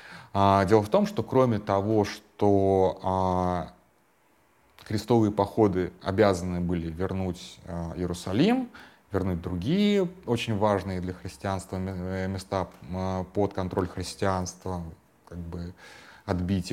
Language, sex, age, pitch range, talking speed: Russian, male, 30-49, 90-110 Hz, 85 wpm